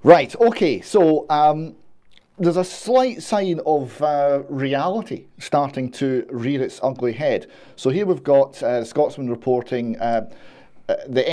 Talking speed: 140 wpm